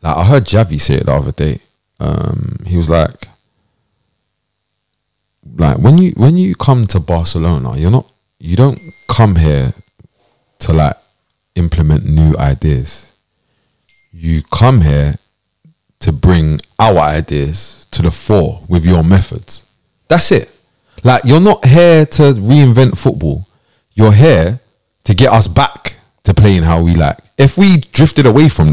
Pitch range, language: 90-130 Hz, English